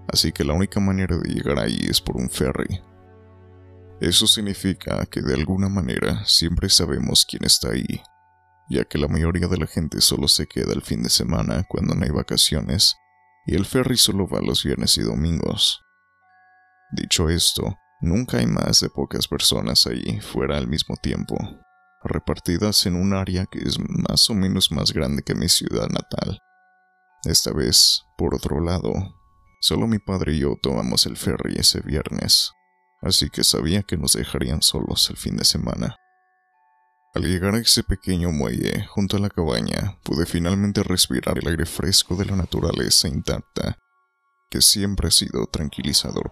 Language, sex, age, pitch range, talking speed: Spanish, male, 30-49, 80-100 Hz, 165 wpm